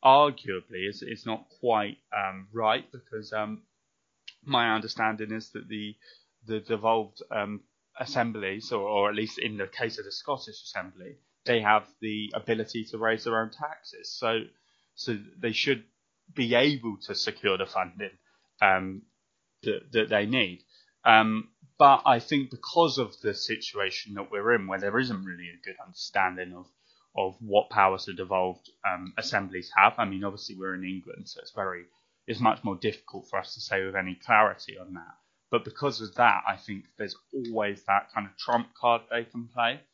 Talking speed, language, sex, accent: 175 wpm, English, male, British